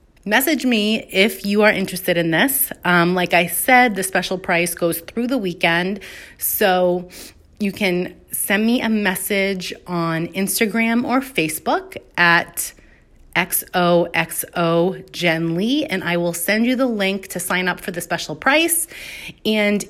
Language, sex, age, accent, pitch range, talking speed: English, female, 30-49, American, 175-215 Hz, 150 wpm